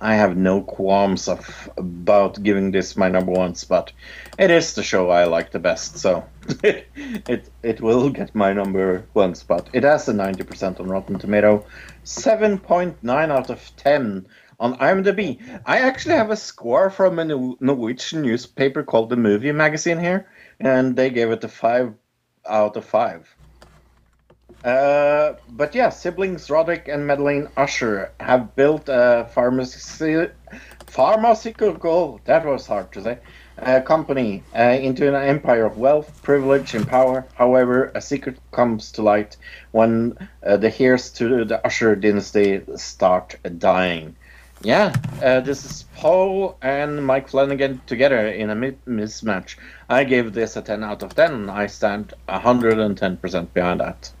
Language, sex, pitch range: English, male, 105-145 Hz